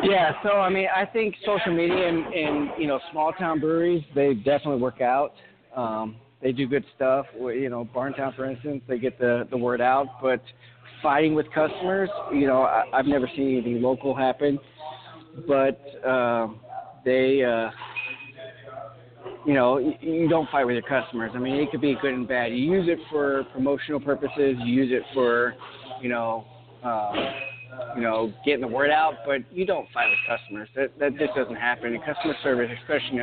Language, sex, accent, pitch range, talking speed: English, male, American, 120-145 Hz, 185 wpm